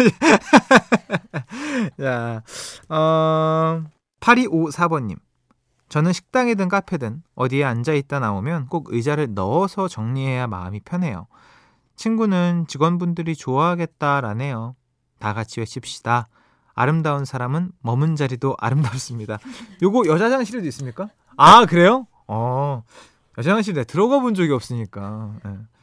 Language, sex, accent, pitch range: Korean, male, native, 120-175 Hz